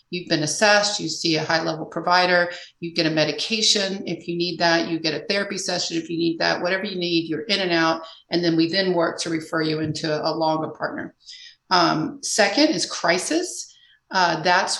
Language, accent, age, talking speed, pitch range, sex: English, American, 40-59, 205 wpm, 160-185 Hz, female